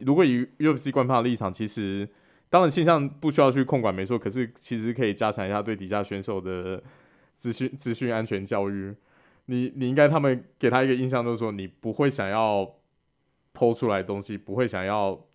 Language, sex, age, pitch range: Chinese, male, 20-39, 100-120 Hz